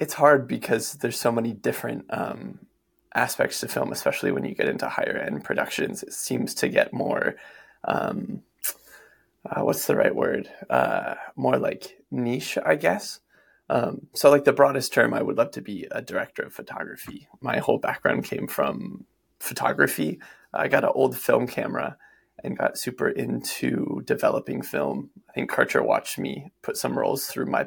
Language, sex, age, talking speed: English, male, 20-39, 170 wpm